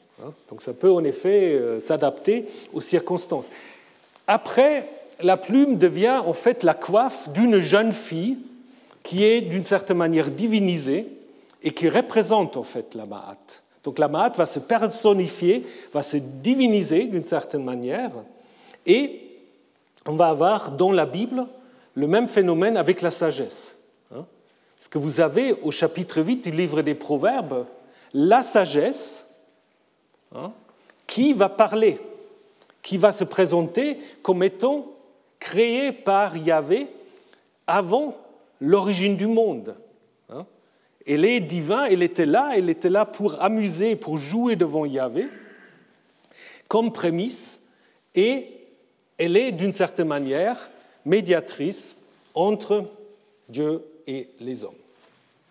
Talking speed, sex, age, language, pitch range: 125 wpm, male, 40-59, French, 165-245 Hz